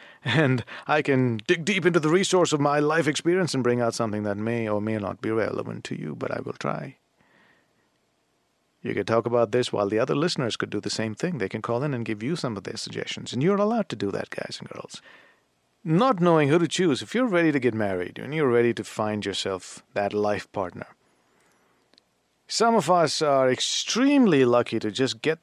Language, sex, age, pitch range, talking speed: English, male, 50-69, 115-170 Hz, 215 wpm